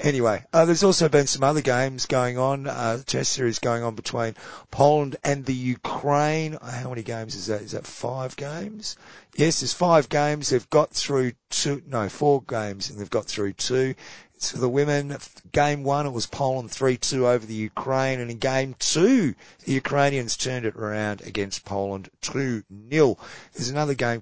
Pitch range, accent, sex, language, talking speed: 110-140 Hz, Australian, male, English, 190 wpm